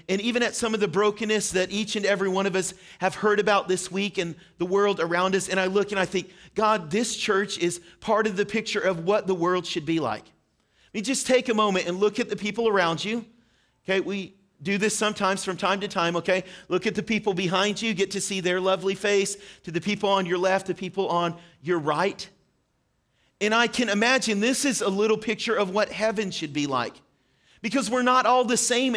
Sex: male